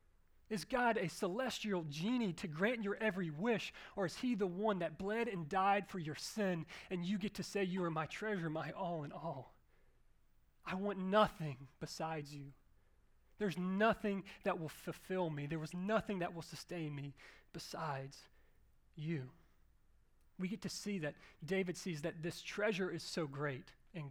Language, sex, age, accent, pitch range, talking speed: English, male, 30-49, American, 155-200 Hz, 170 wpm